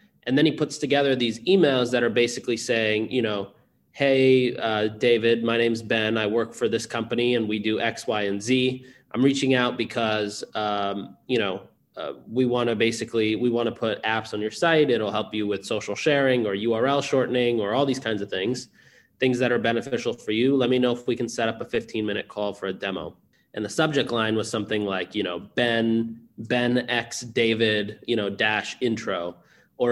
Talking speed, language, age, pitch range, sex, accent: 210 wpm, English, 20-39, 110-130 Hz, male, American